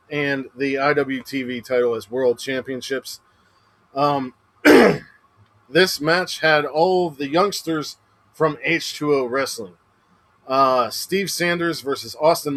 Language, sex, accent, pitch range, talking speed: English, male, American, 120-160 Hz, 105 wpm